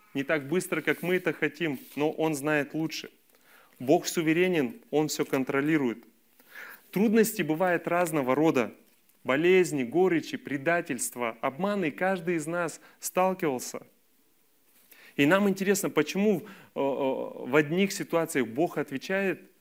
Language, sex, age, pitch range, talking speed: Russian, male, 30-49, 135-180 Hz, 115 wpm